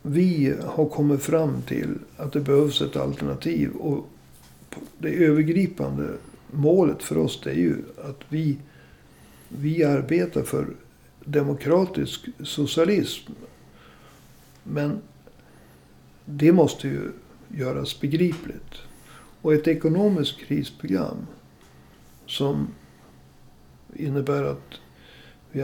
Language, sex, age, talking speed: Swedish, male, 60-79, 90 wpm